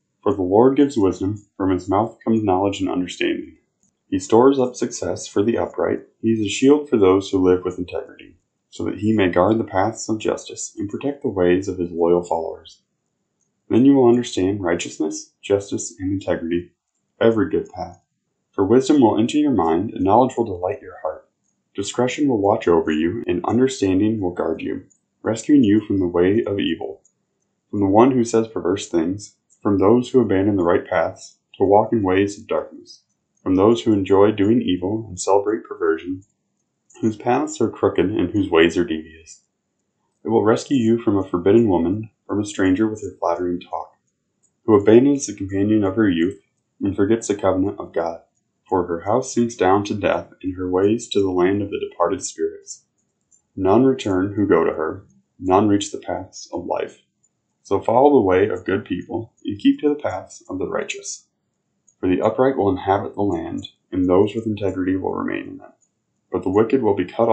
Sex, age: male, 20-39